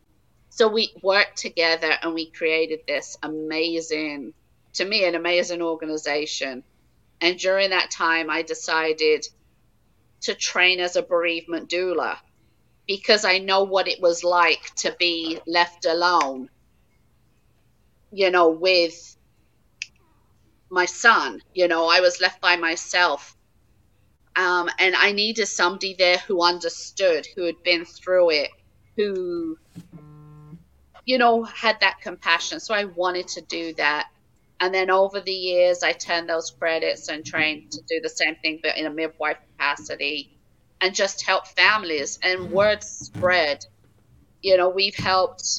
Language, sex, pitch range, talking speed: English, female, 155-190 Hz, 140 wpm